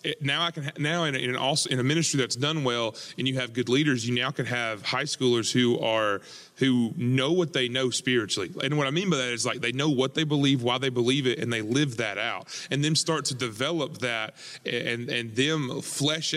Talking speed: 235 wpm